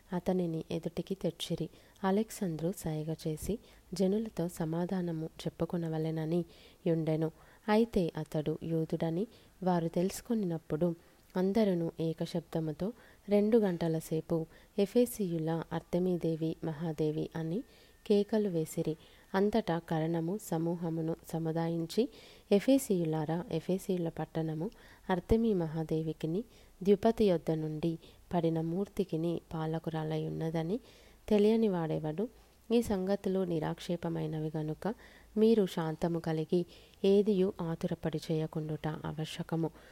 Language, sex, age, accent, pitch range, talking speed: Telugu, female, 20-39, native, 160-190 Hz, 85 wpm